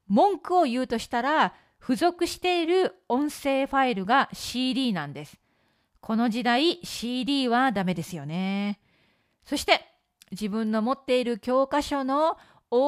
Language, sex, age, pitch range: Japanese, female, 40-59, 215-300 Hz